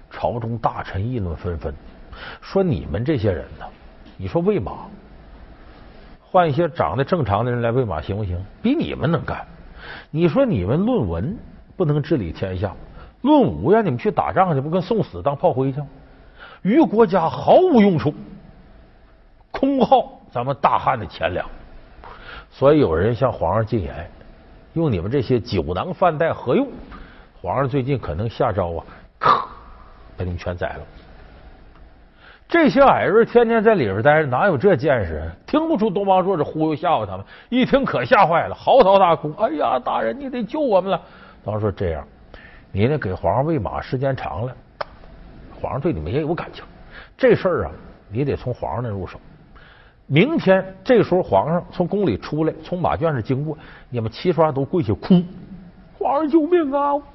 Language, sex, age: Chinese, male, 50-69